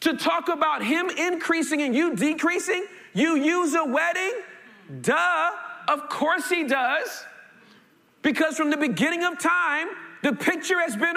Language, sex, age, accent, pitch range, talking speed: English, male, 40-59, American, 225-340 Hz, 145 wpm